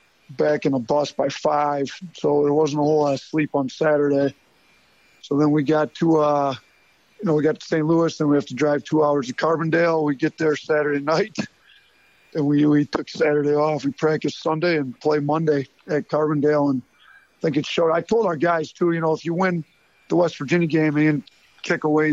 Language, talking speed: English, 215 wpm